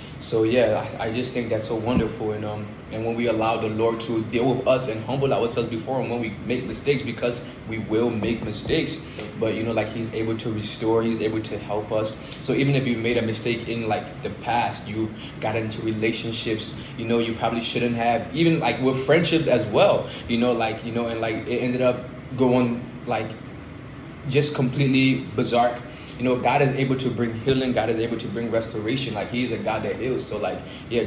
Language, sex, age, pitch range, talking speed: English, male, 20-39, 110-130 Hz, 220 wpm